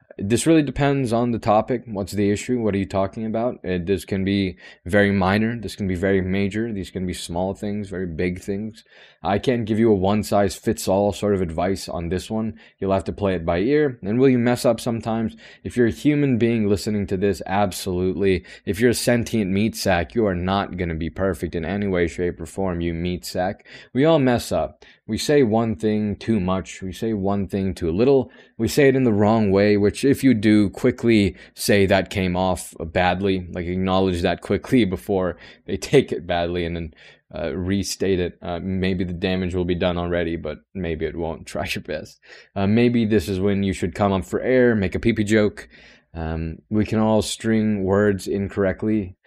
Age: 20-39